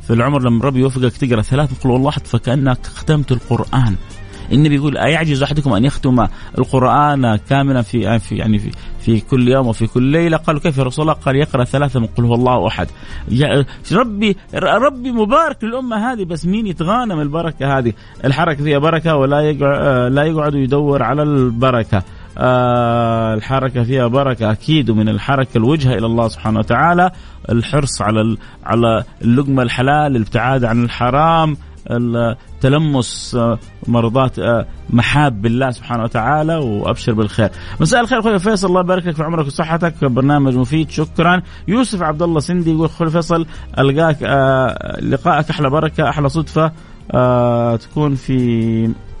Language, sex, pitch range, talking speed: Arabic, male, 115-155 Hz, 145 wpm